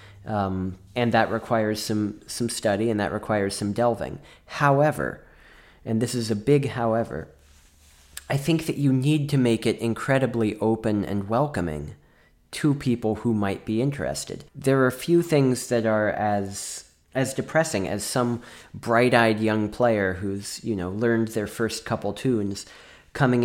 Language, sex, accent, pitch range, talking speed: English, male, American, 105-125 Hz, 160 wpm